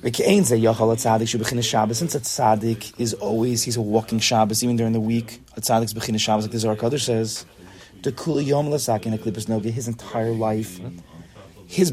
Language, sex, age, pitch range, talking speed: English, male, 30-49, 105-130 Hz, 135 wpm